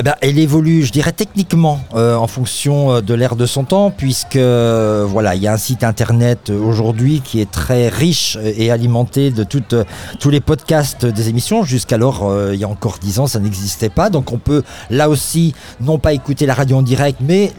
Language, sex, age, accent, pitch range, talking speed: French, male, 50-69, French, 115-145 Hz, 195 wpm